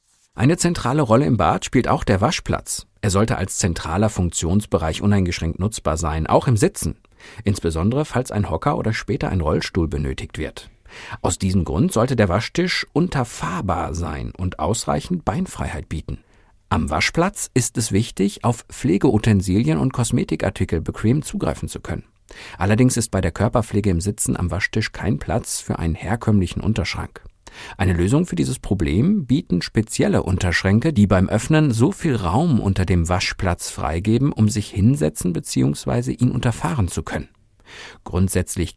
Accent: German